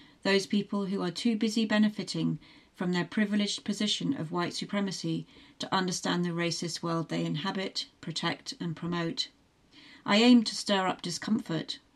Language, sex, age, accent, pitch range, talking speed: English, female, 40-59, British, 170-210 Hz, 150 wpm